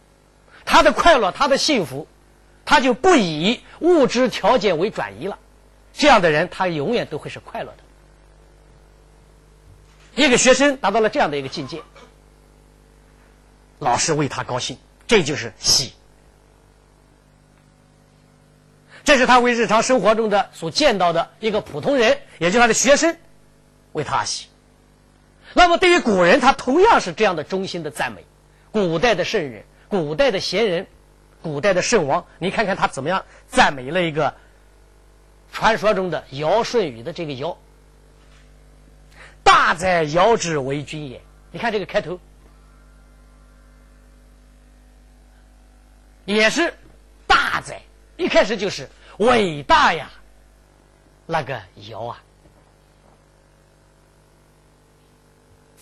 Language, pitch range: Chinese, 155-250 Hz